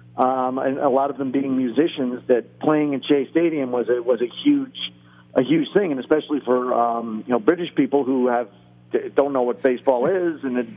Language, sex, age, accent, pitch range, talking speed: English, male, 50-69, American, 120-145 Hz, 210 wpm